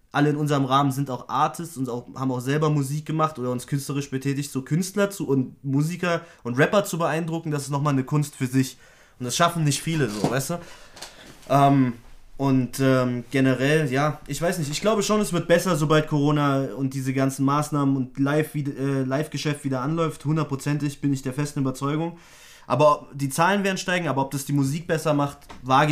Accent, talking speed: German, 200 wpm